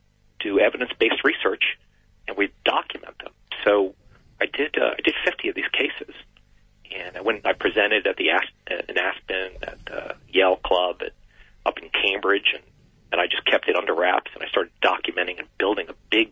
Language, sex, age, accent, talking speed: English, male, 40-59, American, 200 wpm